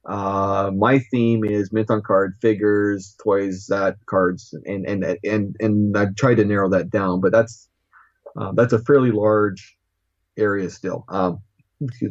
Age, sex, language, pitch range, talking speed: 30-49, male, English, 95-125 Hz, 160 wpm